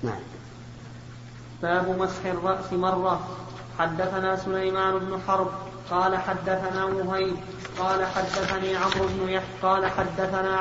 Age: 30-49